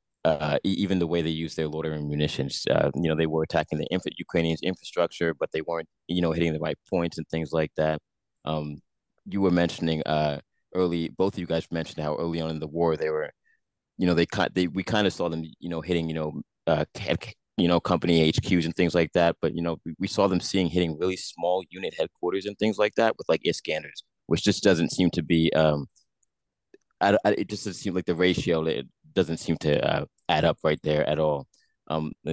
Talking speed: 230 wpm